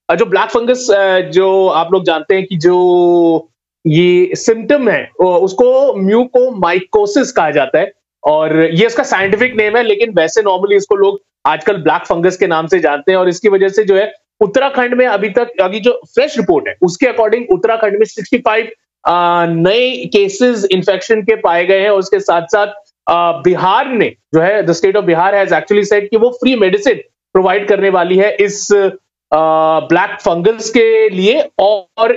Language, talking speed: Hindi, 165 wpm